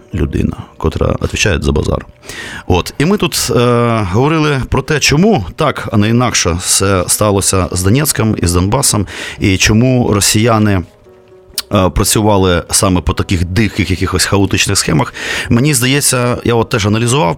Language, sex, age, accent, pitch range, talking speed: Ukrainian, male, 30-49, native, 100-125 Hz, 145 wpm